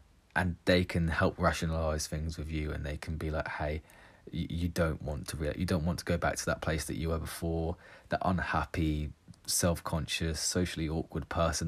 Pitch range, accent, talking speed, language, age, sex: 80-95 Hz, British, 175 wpm, English, 20-39, male